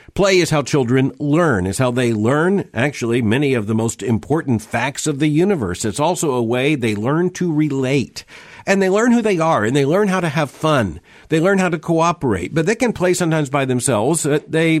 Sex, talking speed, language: male, 215 wpm, English